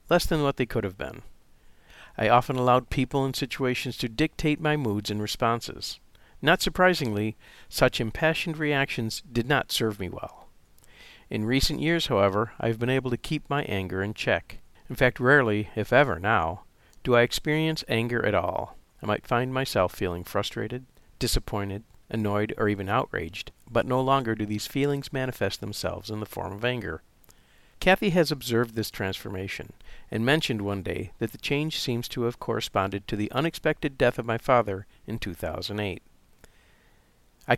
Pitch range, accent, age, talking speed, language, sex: 105-135 Hz, American, 50-69, 170 wpm, English, male